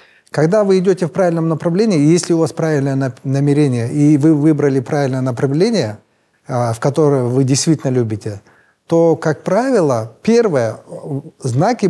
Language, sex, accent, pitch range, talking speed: Russian, male, native, 135-180 Hz, 130 wpm